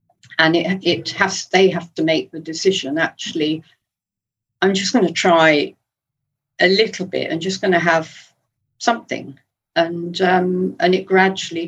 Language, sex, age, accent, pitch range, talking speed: English, female, 50-69, British, 145-185 Hz, 155 wpm